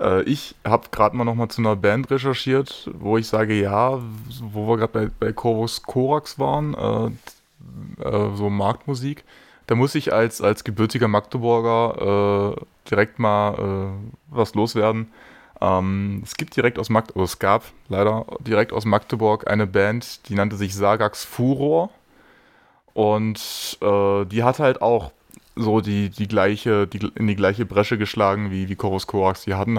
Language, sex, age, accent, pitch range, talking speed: German, male, 20-39, German, 95-115 Hz, 160 wpm